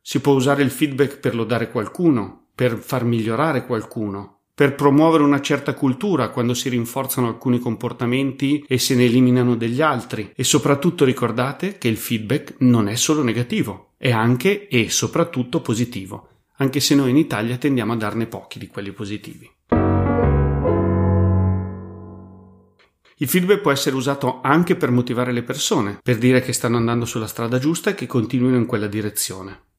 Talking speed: 160 wpm